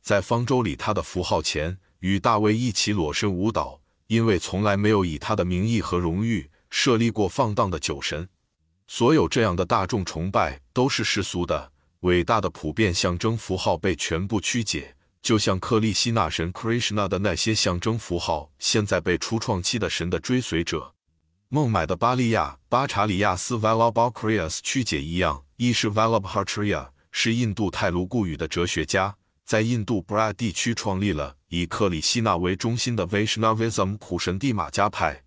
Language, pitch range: Chinese, 85-115 Hz